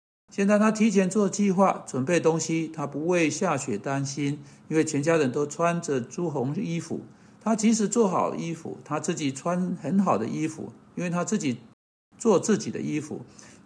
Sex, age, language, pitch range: male, 60-79, Chinese, 145-180 Hz